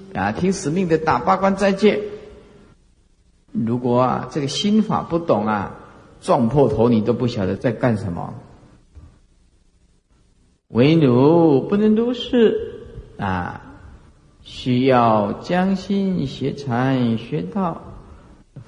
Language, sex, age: Chinese, male, 50-69